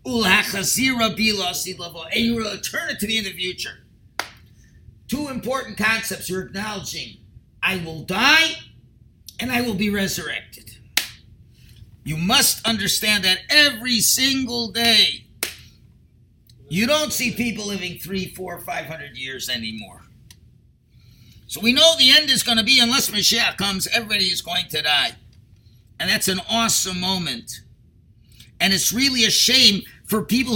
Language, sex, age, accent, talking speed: English, male, 50-69, American, 140 wpm